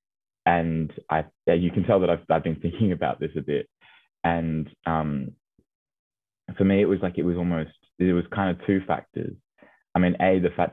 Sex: male